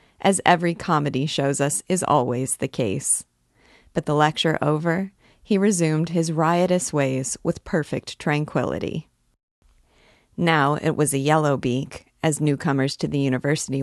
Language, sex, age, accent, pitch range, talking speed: English, female, 40-59, American, 140-175 Hz, 140 wpm